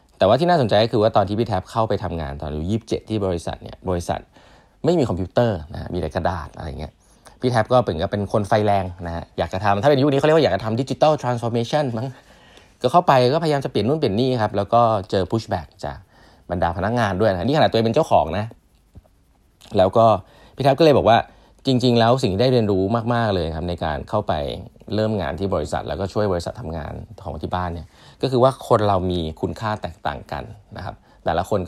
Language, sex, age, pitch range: Thai, male, 20-39, 95-115 Hz